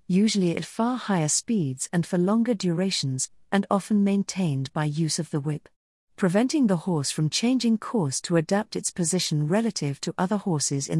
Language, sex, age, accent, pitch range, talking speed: English, female, 50-69, British, 160-215 Hz, 175 wpm